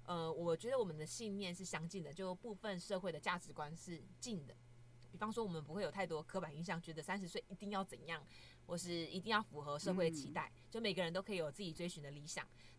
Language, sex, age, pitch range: Chinese, female, 20-39, 160-205 Hz